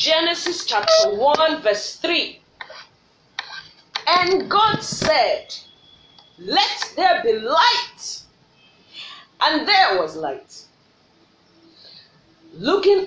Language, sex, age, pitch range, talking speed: English, female, 40-59, 265-410 Hz, 80 wpm